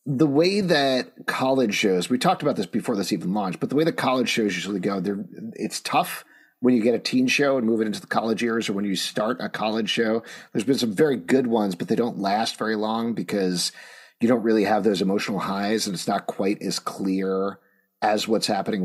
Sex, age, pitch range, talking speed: male, 40-59, 105-160 Hz, 235 wpm